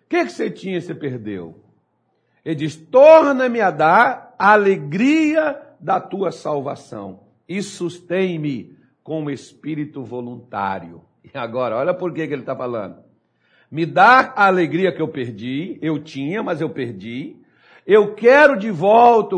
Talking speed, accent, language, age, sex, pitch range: 145 wpm, Brazilian, Portuguese, 60-79, male, 125-180 Hz